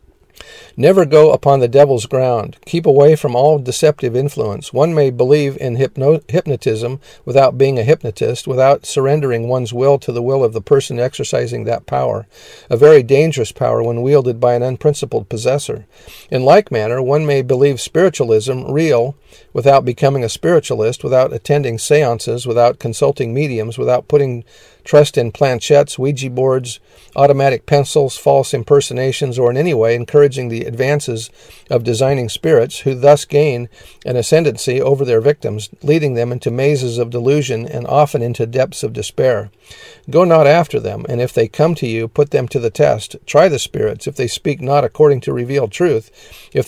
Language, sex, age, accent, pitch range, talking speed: English, male, 50-69, American, 120-145 Hz, 165 wpm